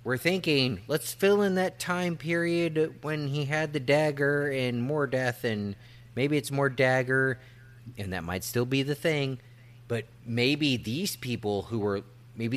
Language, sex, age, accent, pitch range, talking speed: English, male, 30-49, American, 100-120 Hz, 165 wpm